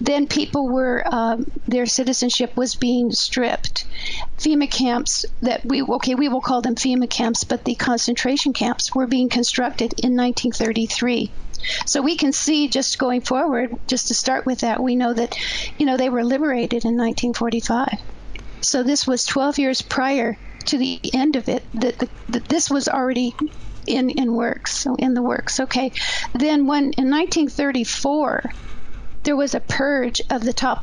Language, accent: English, American